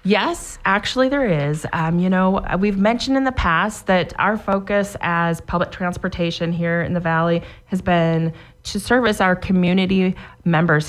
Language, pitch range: English, 165-205 Hz